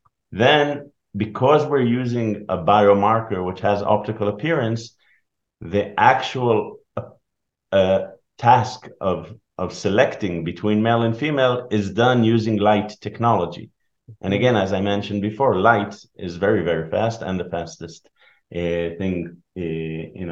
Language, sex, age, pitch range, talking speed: English, male, 50-69, 90-110 Hz, 130 wpm